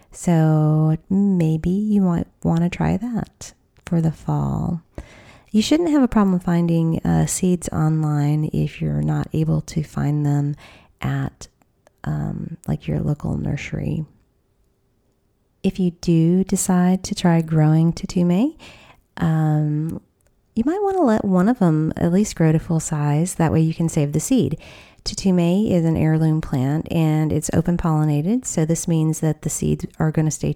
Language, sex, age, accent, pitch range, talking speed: English, female, 30-49, American, 145-180 Hz, 160 wpm